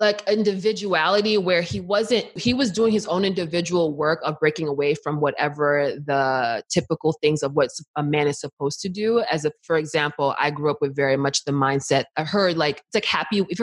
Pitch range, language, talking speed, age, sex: 155-210 Hz, English, 210 wpm, 20-39, female